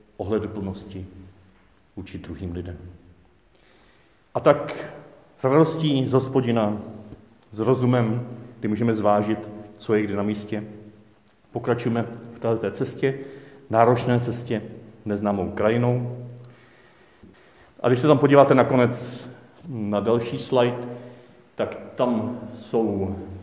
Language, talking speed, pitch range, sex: Czech, 105 wpm, 100-120 Hz, male